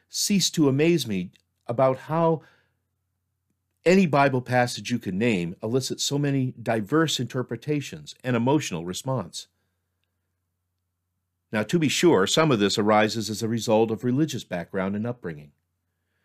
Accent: American